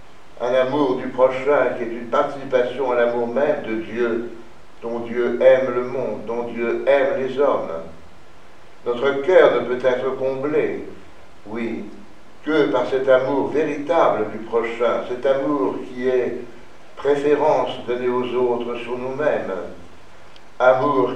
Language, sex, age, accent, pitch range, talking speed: French, male, 60-79, French, 120-140 Hz, 135 wpm